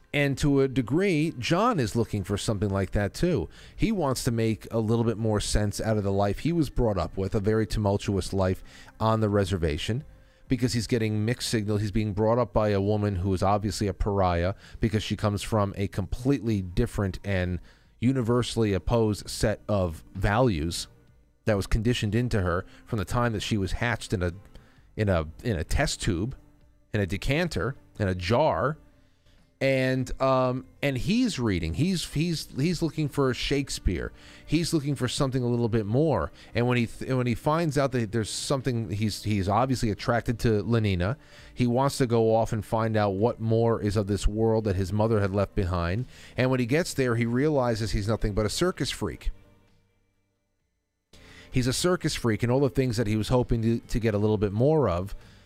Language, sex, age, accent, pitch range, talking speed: English, male, 30-49, American, 100-125 Hz, 195 wpm